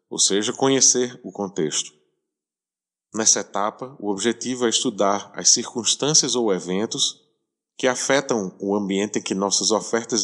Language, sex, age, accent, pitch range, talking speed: Portuguese, male, 20-39, Brazilian, 100-125 Hz, 135 wpm